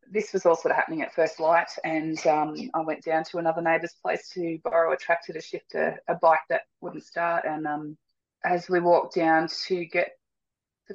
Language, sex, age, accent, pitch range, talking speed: English, female, 20-39, Australian, 155-195 Hz, 215 wpm